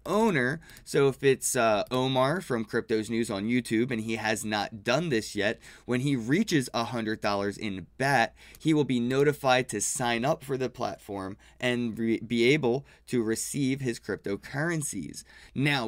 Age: 20-39